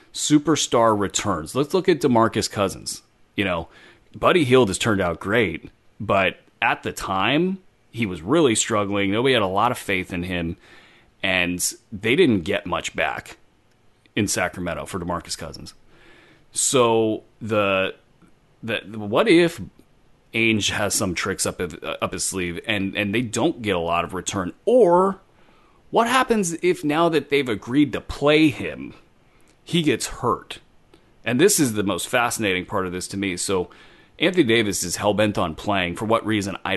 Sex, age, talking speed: male, 30-49, 170 wpm